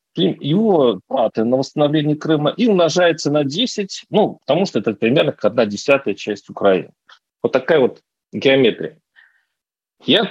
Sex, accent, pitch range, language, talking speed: male, native, 125-170 Hz, Russian, 130 wpm